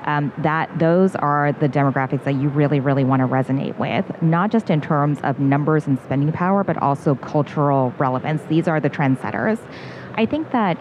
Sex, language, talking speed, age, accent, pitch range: female, English, 190 wpm, 30-49, American, 140-165 Hz